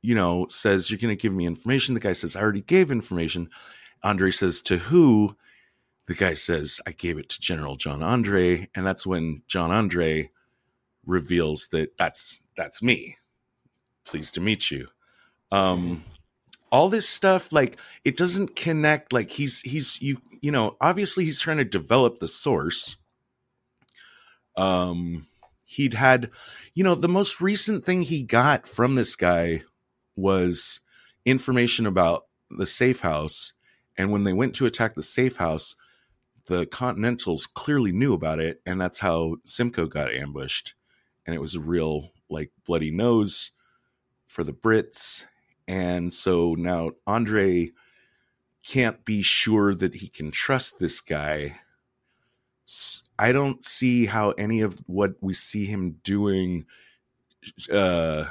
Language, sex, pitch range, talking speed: English, male, 85-125 Hz, 145 wpm